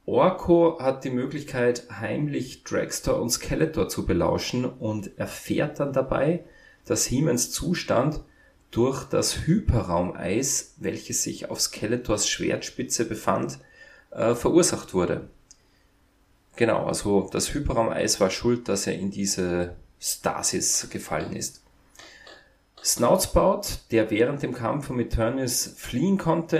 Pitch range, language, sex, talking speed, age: 95-135 Hz, German, male, 115 wpm, 30-49